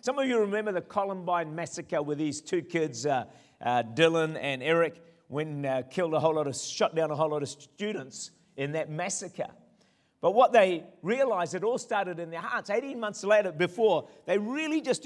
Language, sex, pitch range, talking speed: English, male, 160-210 Hz, 200 wpm